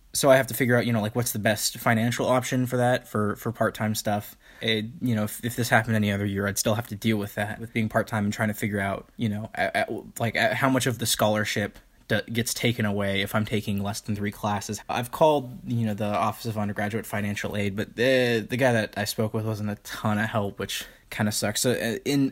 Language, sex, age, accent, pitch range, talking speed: English, male, 20-39, American, 105-120 Hz, 265 wpm